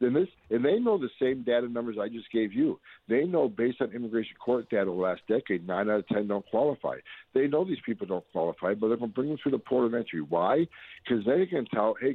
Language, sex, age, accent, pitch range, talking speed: English, male, 60-79, American, 110-140 Hz, 260 wpm